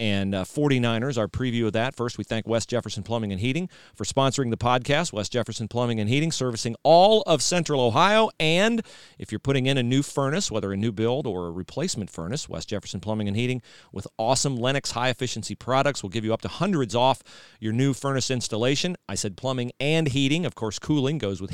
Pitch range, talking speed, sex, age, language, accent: 110-145 Hz, 215 wpm, male, 40-59, English, American